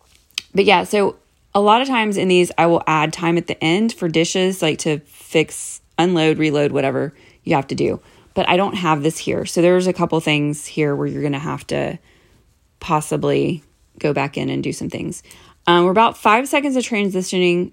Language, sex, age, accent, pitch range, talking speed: English, female, 30-49, American, 155-210 Hz, 205 wpm